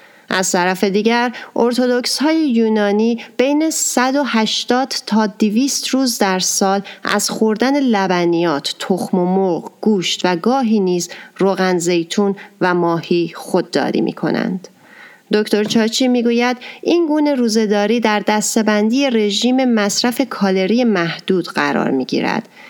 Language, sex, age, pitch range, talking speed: Persian, female, 30-49, 175-235 Hz, 120 wpm